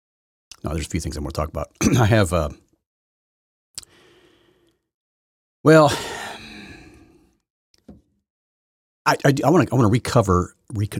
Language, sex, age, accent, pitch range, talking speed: English, male, 40-59, American, 85-120 Hz, 130 wpm